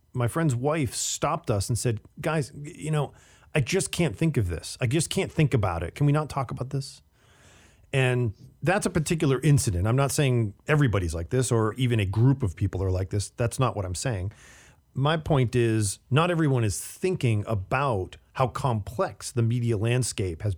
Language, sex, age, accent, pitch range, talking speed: English, male, 40-59, American, 105-145 Hz, 195 wpm